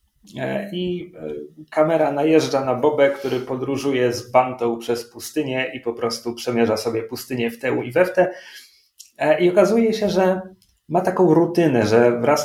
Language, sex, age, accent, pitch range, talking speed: Polish, male, 40-59, native, 115-165 Hz, 155 wpm